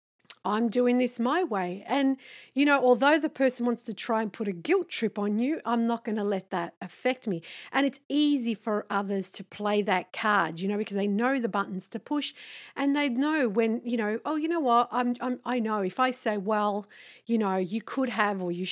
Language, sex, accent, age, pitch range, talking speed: English, female, Australian, 40-59, 200-255 Hz, 230 wpm